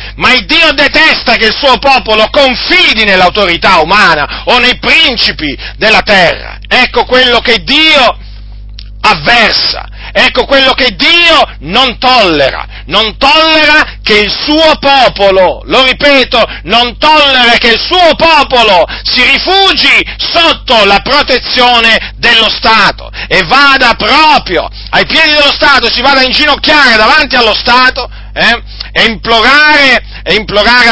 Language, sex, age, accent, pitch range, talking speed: Italian, male, 40-59, native, 225-300 Hz, 130 wpm